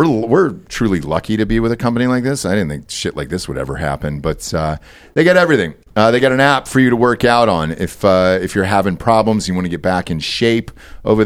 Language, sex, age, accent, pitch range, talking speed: English, male, 40-59, American, 90-120 Hz, 260 wpm